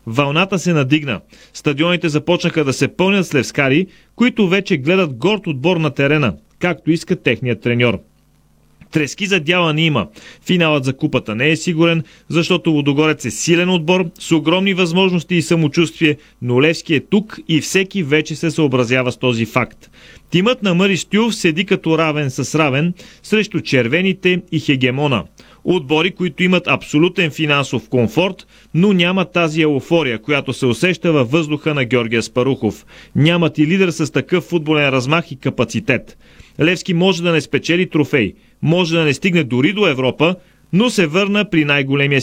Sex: male